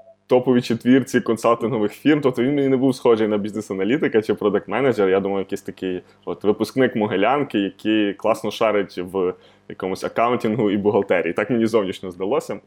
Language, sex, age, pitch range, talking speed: Ukrainian, male, 20-39, 95-120 Hz, 150 wpm